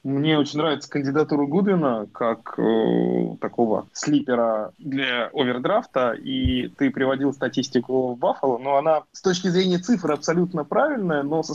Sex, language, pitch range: male, Russian, 120-150 Hz